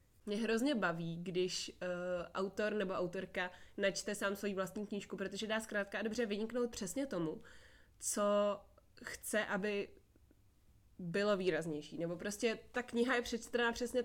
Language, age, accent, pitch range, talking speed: Czech, 20-39, native, 185-210 Hz, 140 wpm